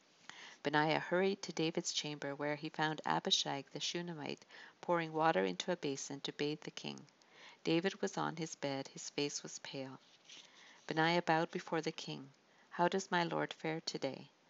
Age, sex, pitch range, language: 50-69, female, 145-175 Hz, English